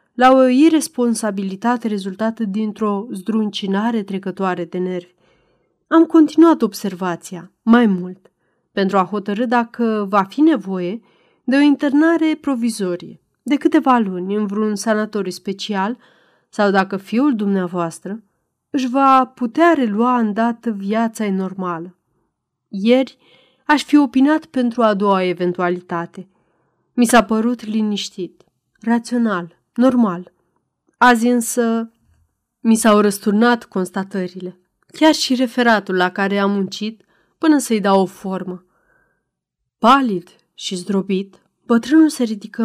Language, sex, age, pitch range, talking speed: Romanian, female, 30-49, 190-240 Hz, 115 wpm